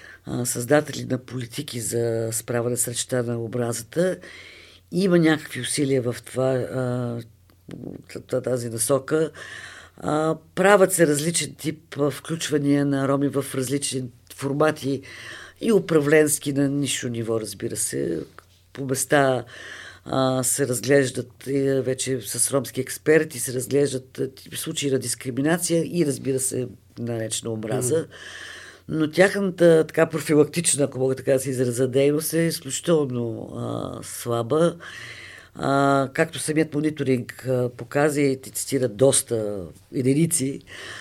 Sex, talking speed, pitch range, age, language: female, 115 wpm, 125-150 Hz, 50-69, Bulgarian